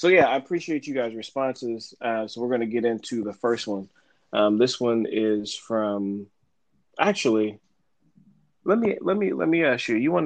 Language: English